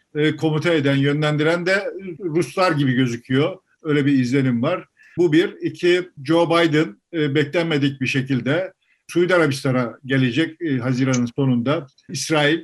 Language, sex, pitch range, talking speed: Turkish, male, 135-160 Hz, 120 wpm